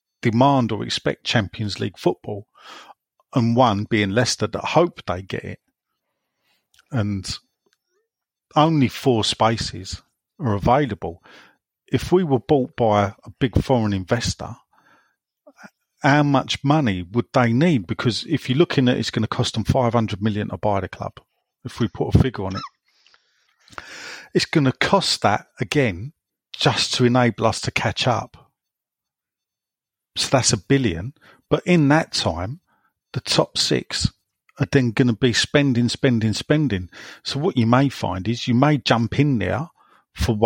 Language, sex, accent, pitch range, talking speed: English, male, British, 105-135 Hz, 155 wpm